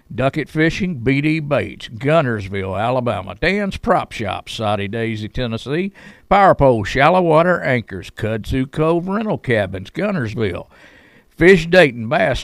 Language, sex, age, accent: English, male, 50-69, American